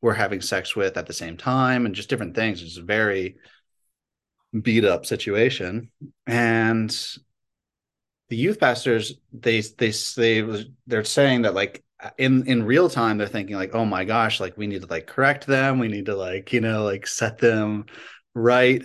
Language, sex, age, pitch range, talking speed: English, male, 30-49, 100-120 Hz, 185 wpm